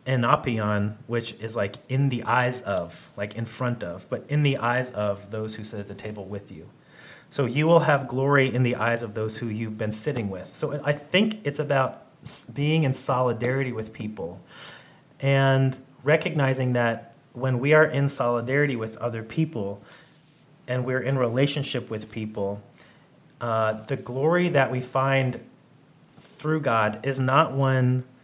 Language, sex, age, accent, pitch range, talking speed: English, male, 30-49, American, 110-135 Hz, 165 wpm